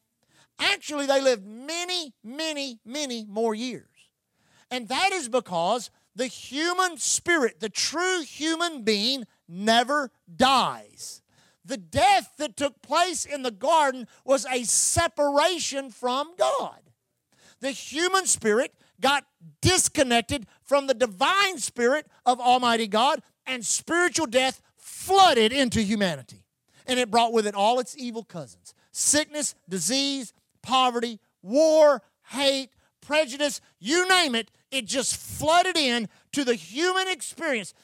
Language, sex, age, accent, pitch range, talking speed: English, male, 50-69, American, 220-295 Hz, 125 wpm